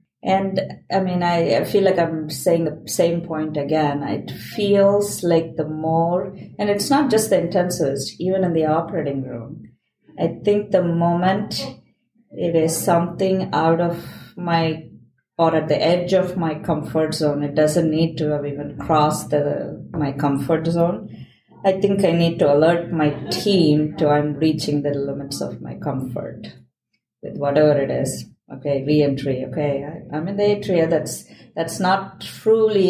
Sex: female